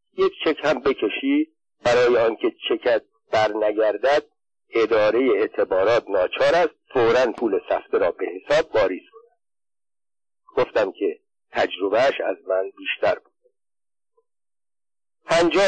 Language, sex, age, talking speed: Persian, male, 50-69, 110 wpm